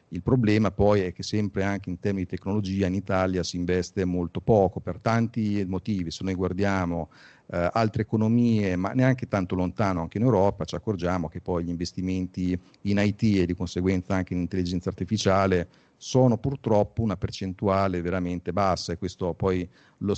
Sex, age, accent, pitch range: male, 40-59, native, 90-110 Hz